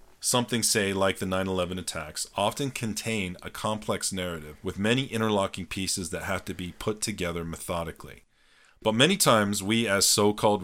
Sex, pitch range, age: male, 90-110 Hz, 40-59